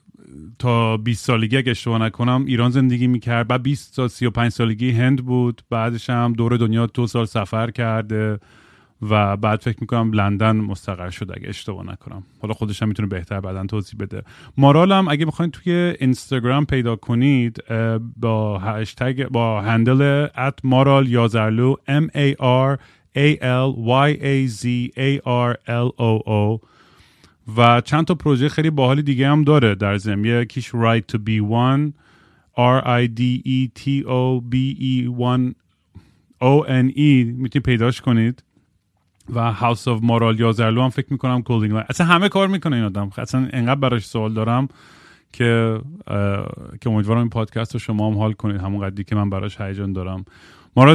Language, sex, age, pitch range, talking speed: Persian, male, 30-49, 110-130 Hz, 145 wpm